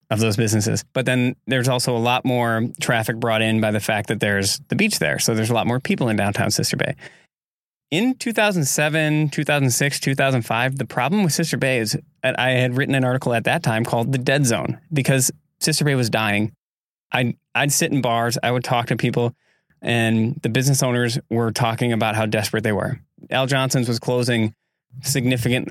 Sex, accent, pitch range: male, American, 115-140 Hz